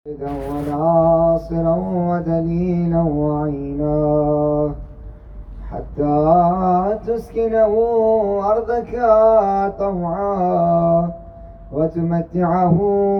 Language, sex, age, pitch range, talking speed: Urdu, male, 20-39, 150-200 Hz, 45 wpm